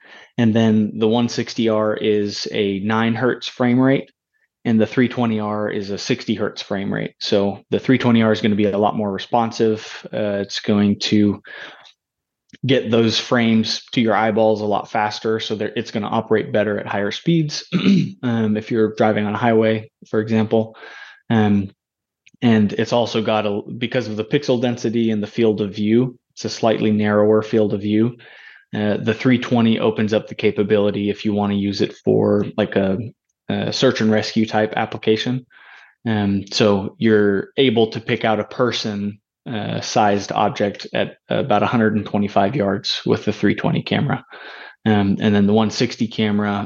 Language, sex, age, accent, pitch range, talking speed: English, male, 20-39, American, 105-115 Hz, 170 wpm